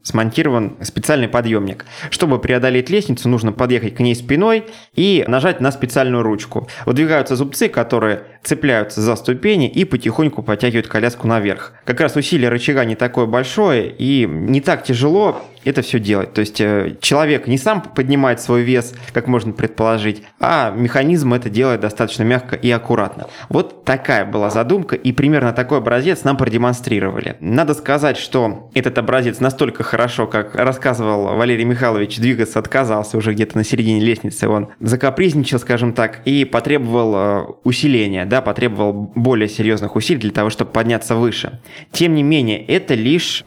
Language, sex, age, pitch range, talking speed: Russian, male, 20-39, 110-135 Hz, 155 wpm